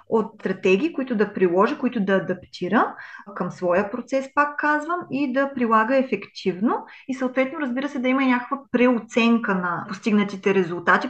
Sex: female